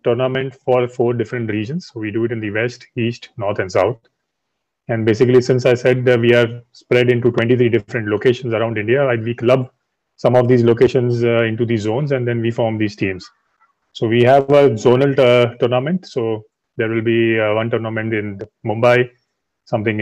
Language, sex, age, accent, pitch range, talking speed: English, male, 30-49, Indian, 115-130 Hz, 190 wpm